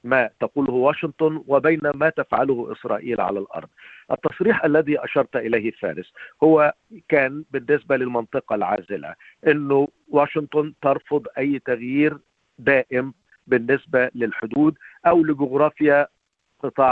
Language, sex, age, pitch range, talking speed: Arabic, male, 50-69, 140-170 Hz, 105 wpm